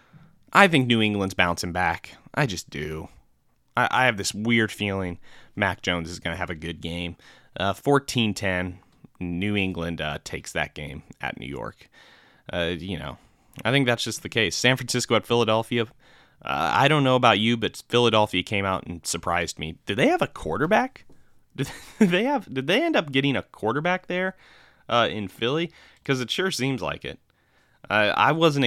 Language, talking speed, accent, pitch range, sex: English, 185 wpm, American, 95-125 Hz, male